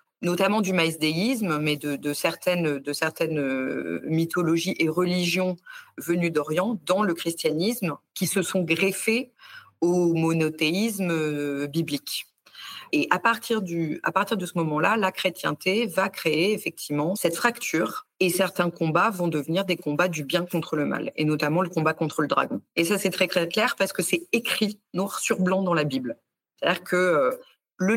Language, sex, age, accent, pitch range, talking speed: French, female, 40-59, French, 160-200 Hz, 165 wpm